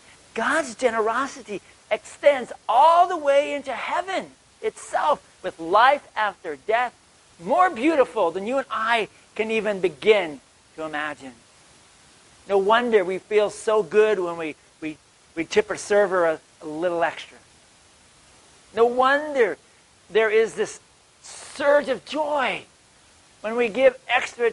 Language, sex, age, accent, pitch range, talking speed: English, male, 50-69, American, 200-285 Hz, 125 wpm